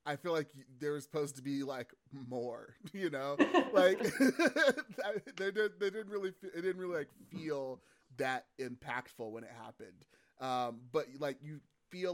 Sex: male